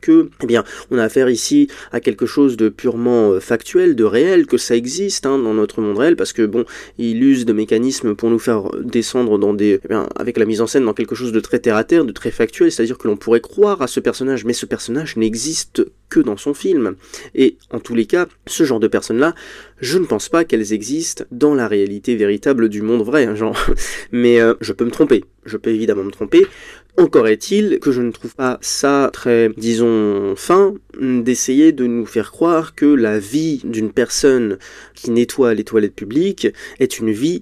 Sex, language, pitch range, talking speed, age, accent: male, French, 115-165 Hz, 205 wpm, 20-39, French